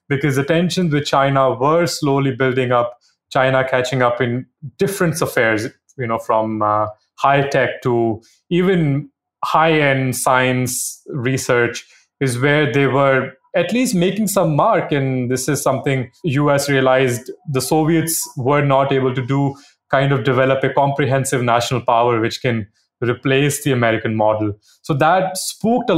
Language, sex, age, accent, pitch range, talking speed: English, male, 30-49, Indian, 125-155 Hz, 150 wpm